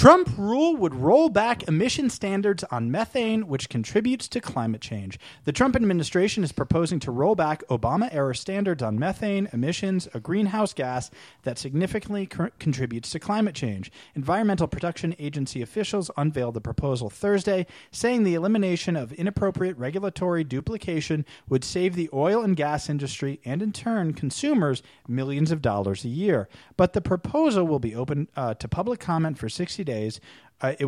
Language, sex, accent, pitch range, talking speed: English, male, American, 135-205 Hz, 165 wpm